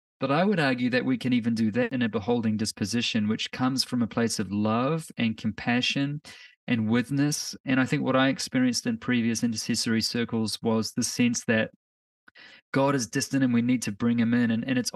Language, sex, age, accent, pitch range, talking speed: English, male, 20-39, Australian, 110-140 Hz, 210 wpm